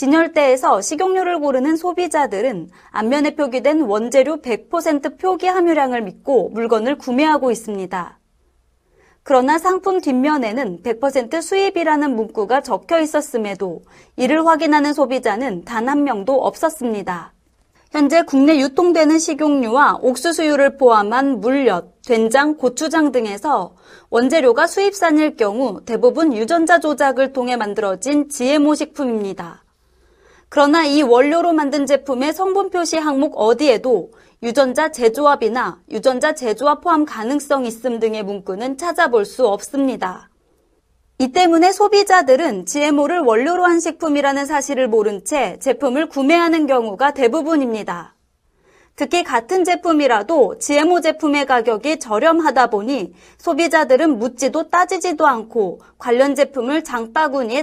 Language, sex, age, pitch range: Korean, female, 30-49, 240-320 Hz